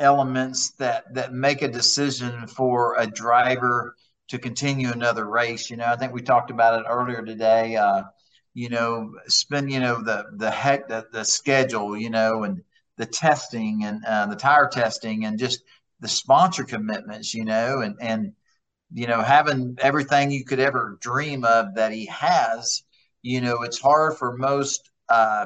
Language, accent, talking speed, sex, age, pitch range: English, American, 170 wpm, male, 50-69, 115-135 Hz